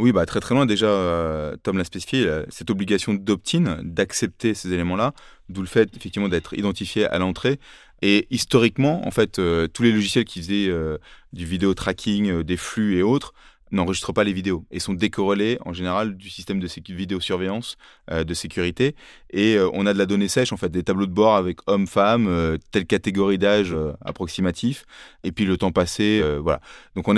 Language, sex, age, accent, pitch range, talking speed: French, male, 20-39, French, 90-105 Hz, 190 wpm